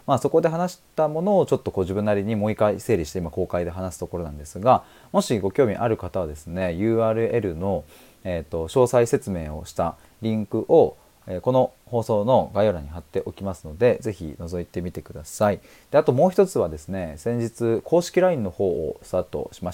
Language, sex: Japanese, male